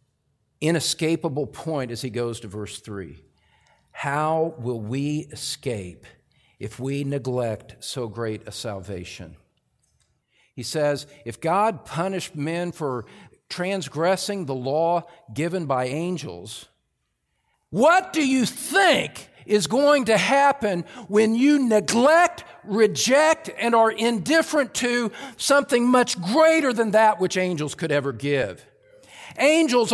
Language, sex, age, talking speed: English, male, 50-69, 120 wpm